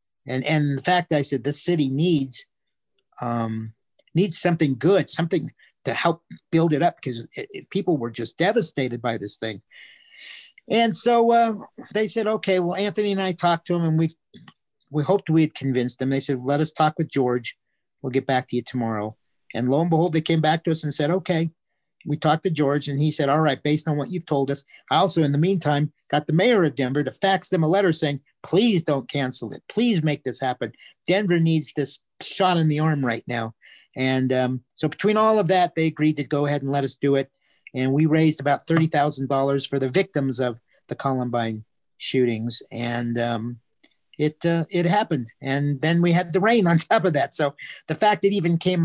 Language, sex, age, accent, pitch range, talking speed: English, male, 50-69, American, 130-175 Hz, 215 wpm